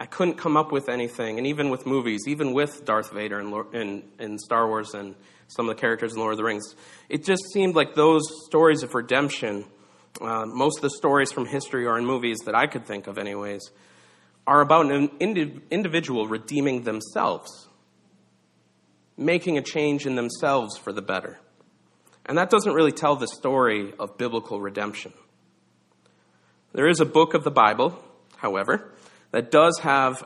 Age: 40-59